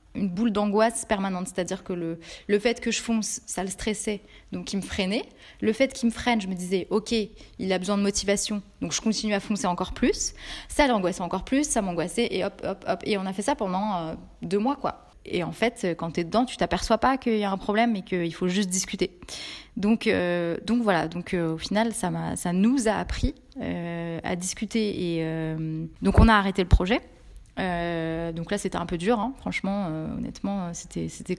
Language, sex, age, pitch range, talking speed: French, female, 20-39, 175-220 Hz, 225 wpm